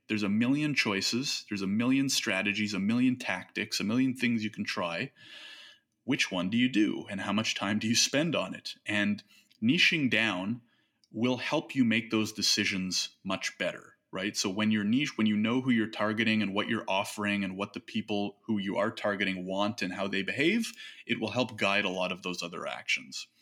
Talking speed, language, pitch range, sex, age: 205 wpm, English, 100-125 Hz, male, 30-49